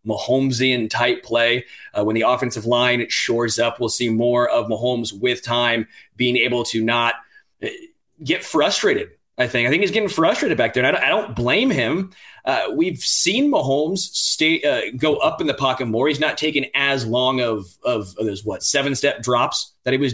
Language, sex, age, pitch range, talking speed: English, male, 20-39, 120-150 Hz, 195 wpm